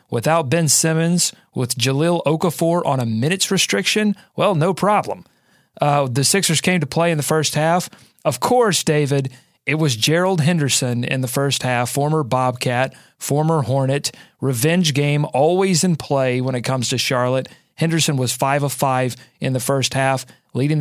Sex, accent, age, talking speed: male, American, 30-49, 165 wpm